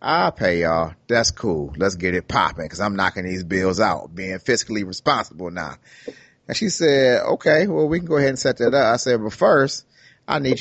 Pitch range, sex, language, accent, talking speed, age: 110-160 Hz, male, English, American, 215 wpm, 30-49